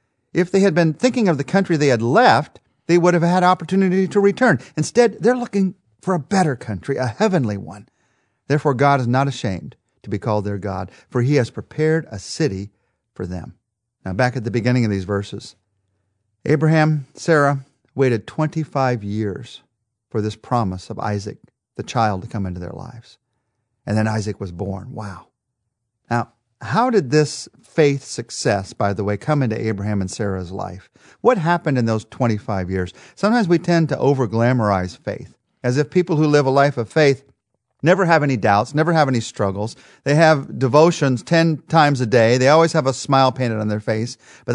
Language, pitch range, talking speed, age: English, 110-155 Hz, 185 wpm, 50-69